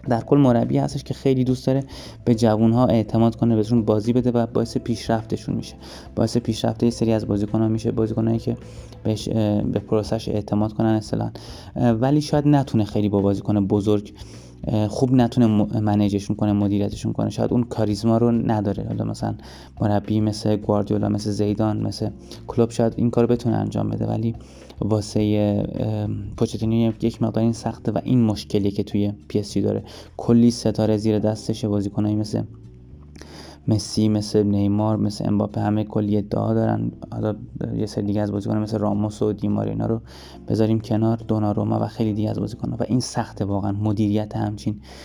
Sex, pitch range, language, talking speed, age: male, 105-115 Hz, Persian, 165 wpm, 20-39